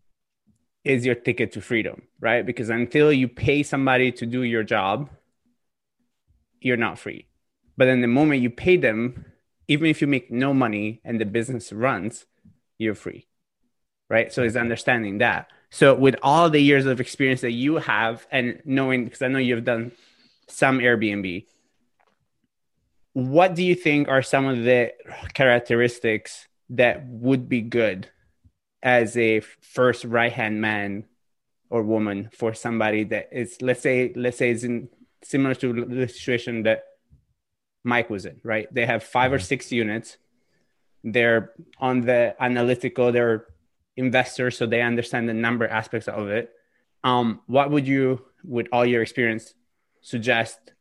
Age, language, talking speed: 20-39, English, 150 wpm